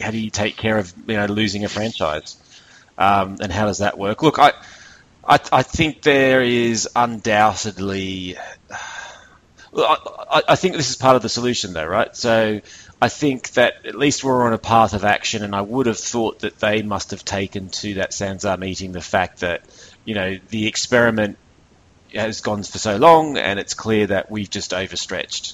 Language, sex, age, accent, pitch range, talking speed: English, male, 30-49, Australian, 95-110 Hz, 190 wpm